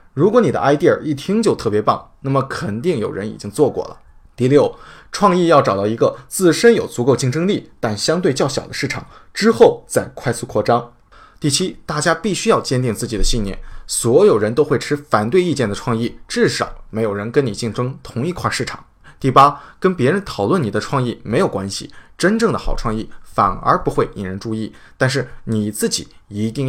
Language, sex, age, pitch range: Chinese, male, 20-39, 110-170 Hz